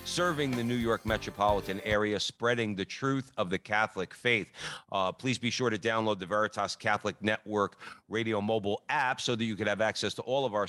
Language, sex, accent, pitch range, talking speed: English, male, American, 105-130 Hz, 200 wpm